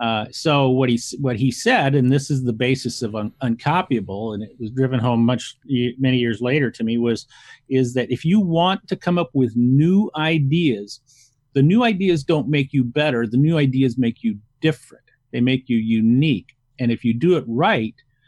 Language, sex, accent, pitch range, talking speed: English, male, American, 120-150 Hz, 200 wpm